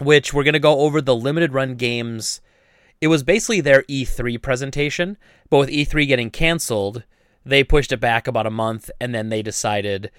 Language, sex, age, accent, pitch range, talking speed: English, male, 30-49, American, 110-140 Hz, 190 wpm